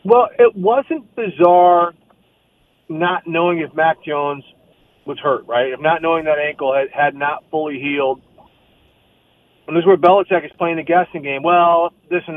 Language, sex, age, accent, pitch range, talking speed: English, male, 40-59, American, 155-195 Hz, 165 wpm